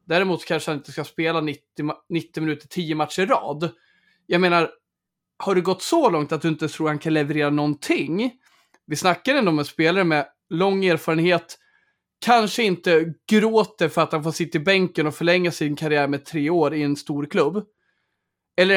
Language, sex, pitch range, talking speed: Swedish, male, 155-195 Hz, 185 wpm